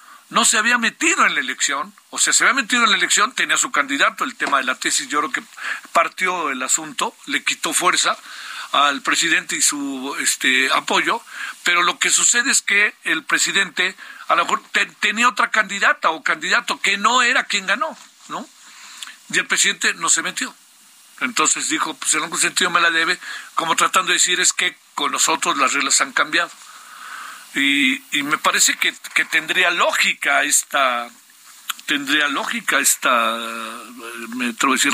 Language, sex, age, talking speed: Spanish, male, 50-69, 175 wpm